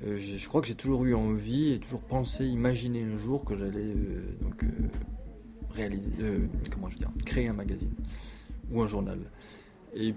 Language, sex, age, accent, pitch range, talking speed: French, male, 20-39, French, 100-115 Hz, 185 wpm